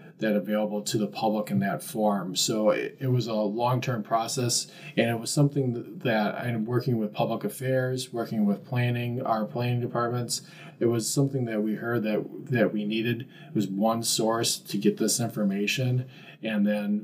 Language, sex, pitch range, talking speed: English, male, 105-130 Hz, 185 wpm